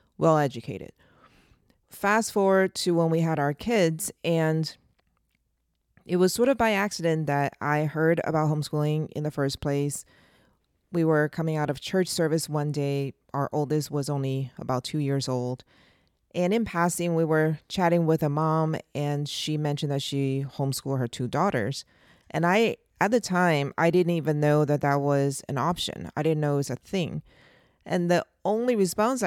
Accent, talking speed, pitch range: American, 175 wpm, 145-175 Hz